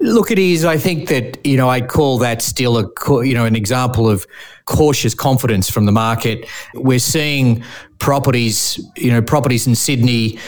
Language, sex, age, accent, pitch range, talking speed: English, male, 30-49, Australian, 115-130 Hz, 175 wpm